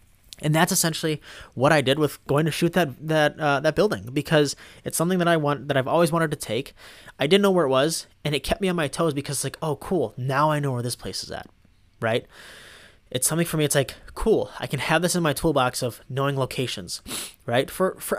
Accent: American